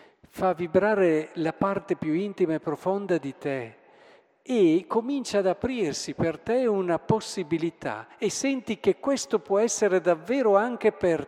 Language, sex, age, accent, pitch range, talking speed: Italian, male, 50-69, native, 130-195 Hz, 145 wpm